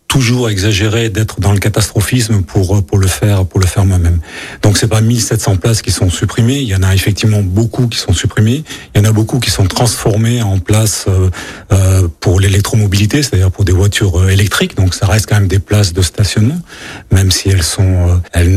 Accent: French